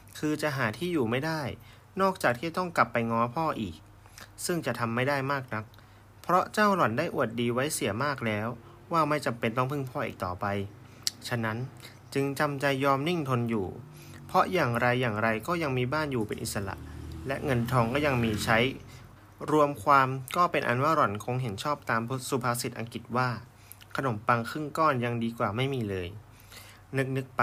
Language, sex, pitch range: Thai, male, 110-140 Hz